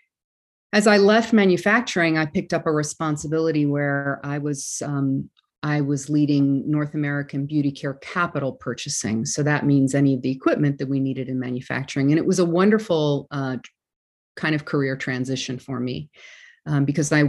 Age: 40-59